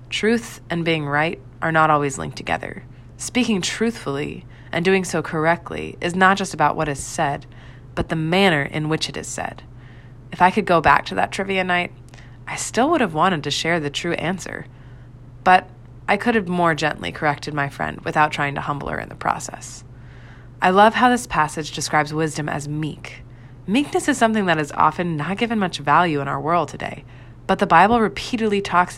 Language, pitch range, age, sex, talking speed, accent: English, 130-180 Hz, 20-39, female, 195 wpm, American